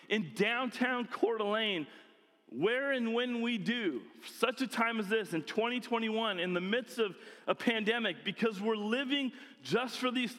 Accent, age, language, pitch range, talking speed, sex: American, 40-59, English, 205-250 Hz, 160 wpm, male